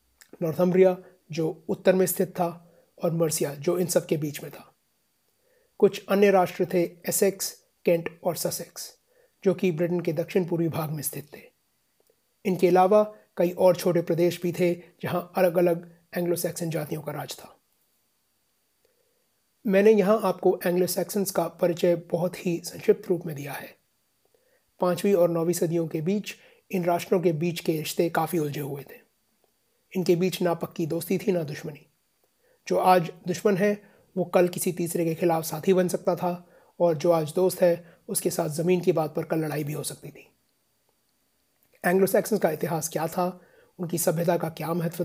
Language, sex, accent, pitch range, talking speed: Hindi, male, native, 170-185 Hz, 170 wpm